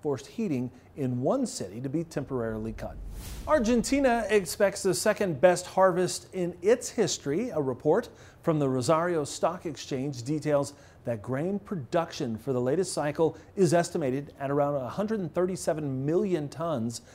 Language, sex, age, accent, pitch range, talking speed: English, male, 40-59, American, 135-190 Hz, 135 wpm